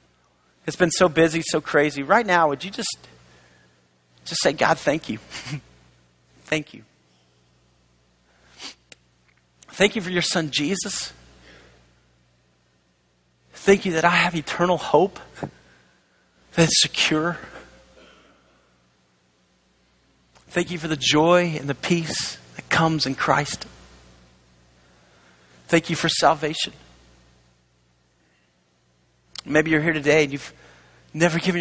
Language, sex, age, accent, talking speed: English, male, 40-59, American, 110 wpm